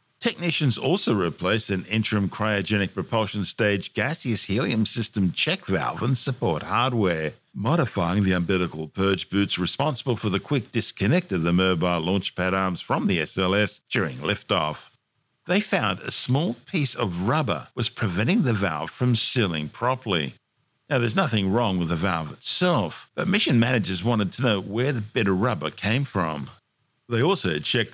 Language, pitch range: English, 95-120 Hz